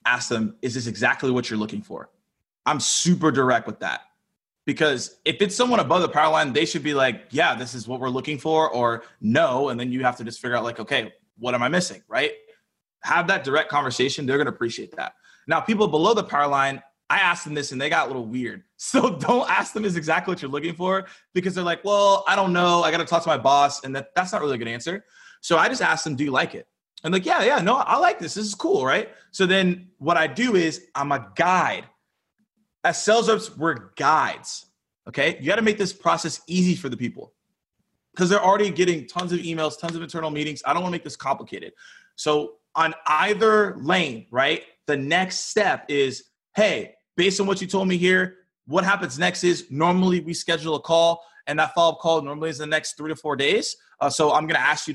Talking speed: 235 wpm